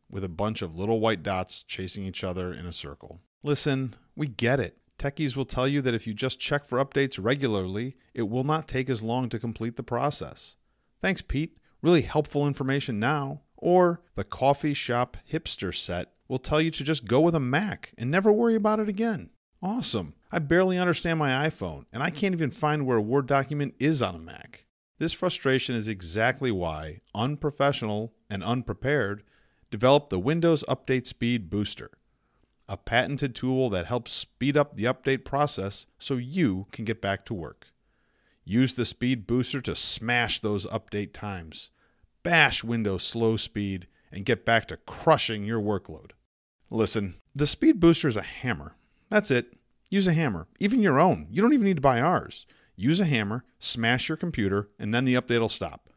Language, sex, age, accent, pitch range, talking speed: English, male, 40-59, American, 105-145 Hz, 180 wpm